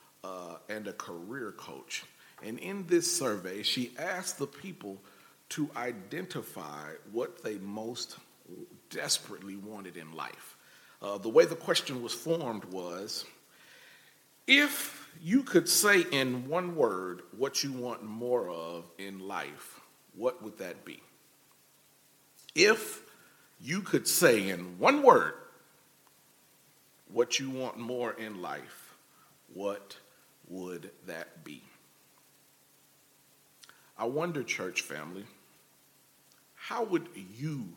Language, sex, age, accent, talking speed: English, male, 40-59, American, 115 wpm